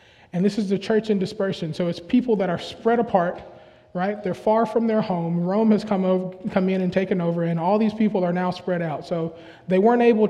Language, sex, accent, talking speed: English, male, American, 240 wpm